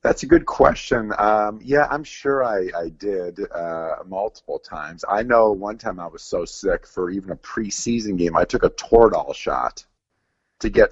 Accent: American